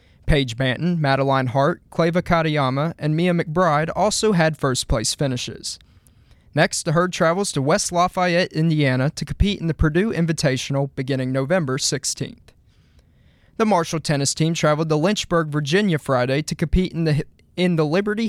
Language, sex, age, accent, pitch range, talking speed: English, male, 20-39, American, 140-175 Hz, 155 wpm